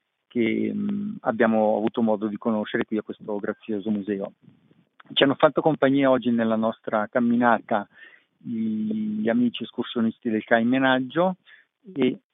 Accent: native